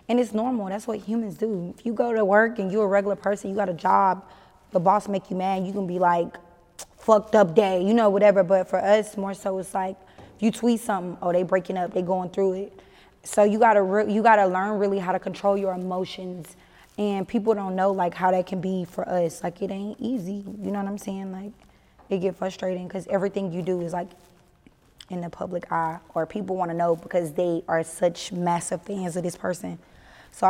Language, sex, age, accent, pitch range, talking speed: English, female, 20-39, American, 180-205 Hz, 225 wpm